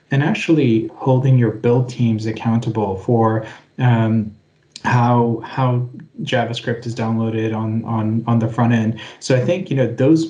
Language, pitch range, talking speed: English, 115-125 Hz, 150 wpm